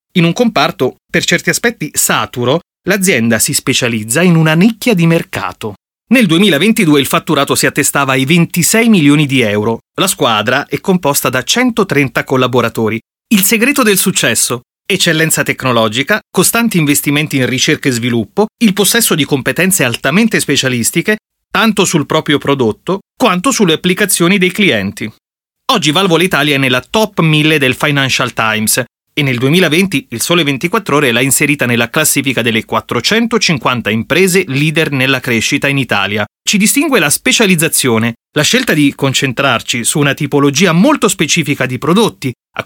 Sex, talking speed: male, 145 wpm